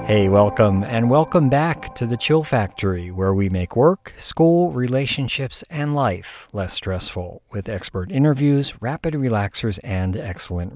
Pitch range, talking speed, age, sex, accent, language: 95-135 Hz, 145 wpm, 50-69, male, American, English